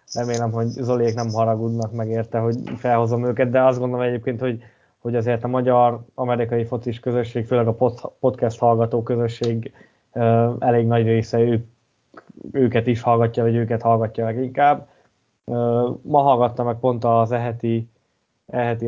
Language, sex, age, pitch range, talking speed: Hungarian, male, 20-39, 115-130 Hz, 140 wpm